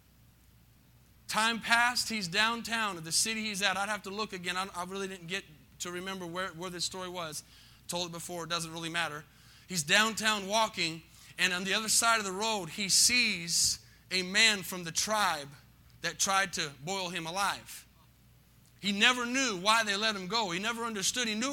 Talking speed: 195 wpm